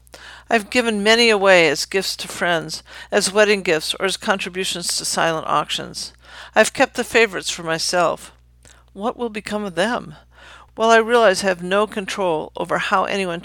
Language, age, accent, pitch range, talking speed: English, 50-69, American, 160-205 Hz, 170 wpm